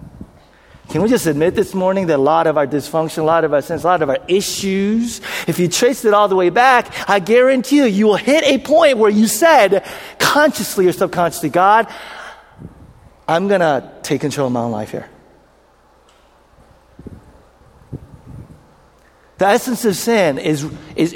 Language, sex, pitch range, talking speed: English, male, 150-220 Hz, 175 wpm